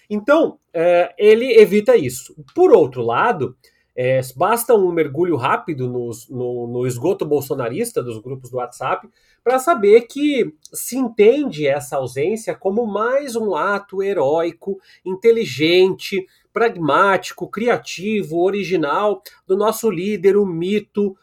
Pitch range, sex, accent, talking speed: 170-230 Hz, male, Brazilian, 115 wpm